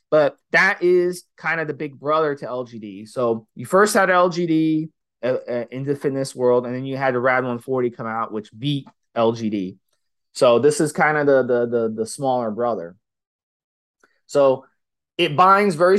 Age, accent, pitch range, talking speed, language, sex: 20-39, American, 125-155 Hz, 175 wpm, English, male